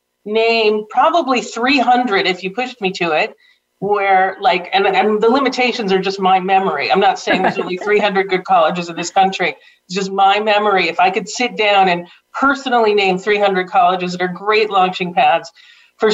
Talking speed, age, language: 185 wpm, 40-59, English